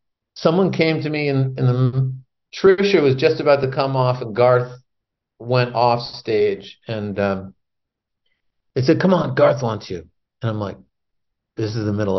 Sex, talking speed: male, 170 wpm